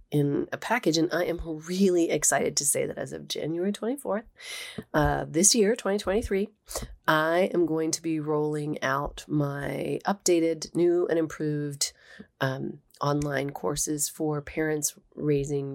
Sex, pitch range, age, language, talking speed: female, 140-190 Hz, 30-49, English, 140 wpm